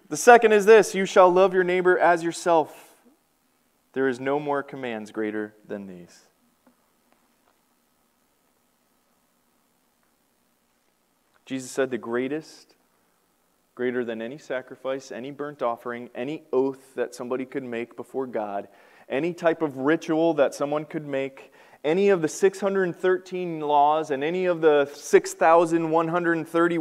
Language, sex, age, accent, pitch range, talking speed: English, male, 20-39, American, 130-195 Hz, 125 wpm